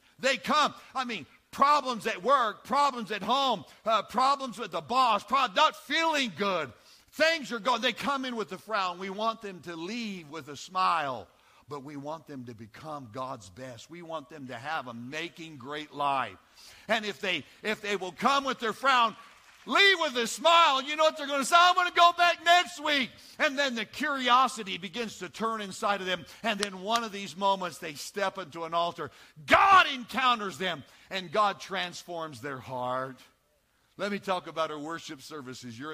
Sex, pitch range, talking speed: male, 140-230 Hz, 195 wpm